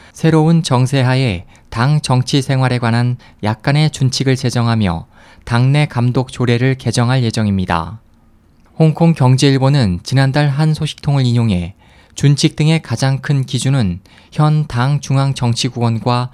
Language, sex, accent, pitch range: Korean, male, native, 110-140 Hz